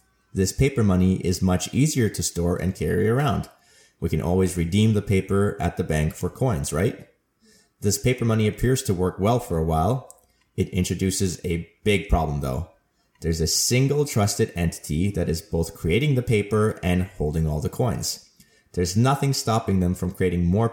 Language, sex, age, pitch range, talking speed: English, male, 30-49, 90-110 Hz, 180 wpm